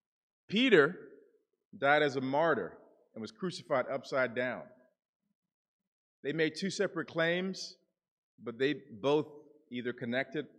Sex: male